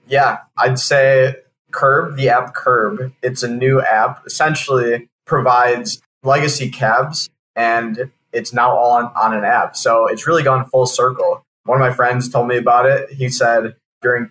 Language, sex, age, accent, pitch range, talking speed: English, male, 20-39, American, 115-135 Hz, 170 wpm